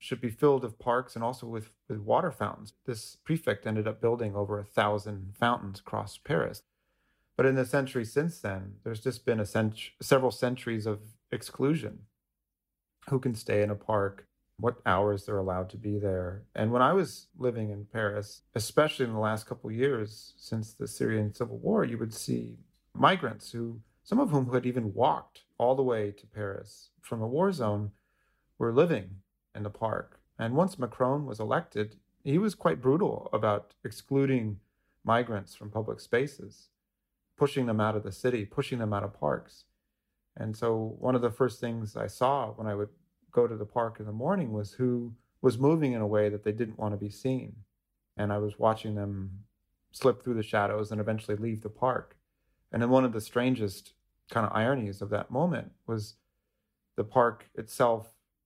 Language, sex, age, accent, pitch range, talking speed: English, male, 30-49, American, 105-125 Hz, 190 wpm